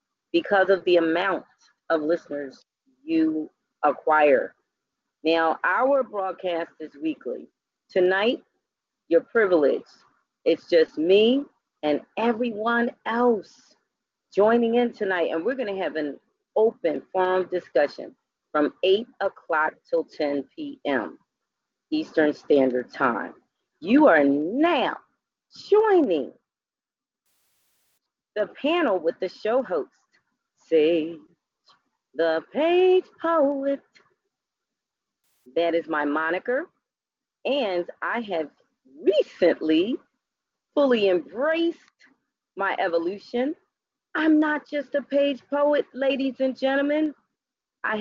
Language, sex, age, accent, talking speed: English, female, 40-59, American, 95 wpm